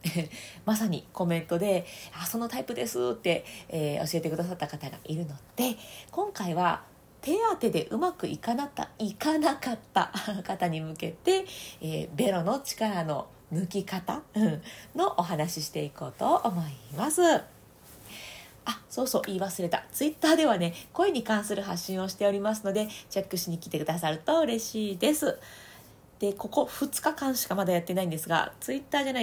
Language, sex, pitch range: Japanese, female, 165-235 Hz